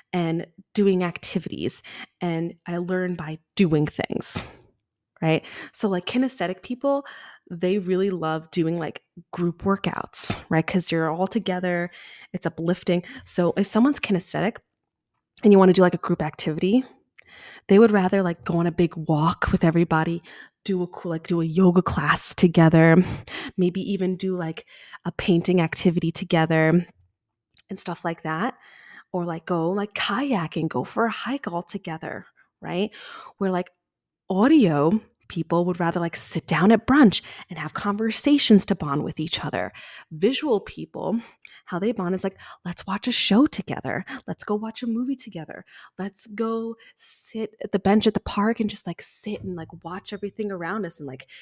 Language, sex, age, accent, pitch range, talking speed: English, female, 20-39, American, 165-205 Hz, 165 wpm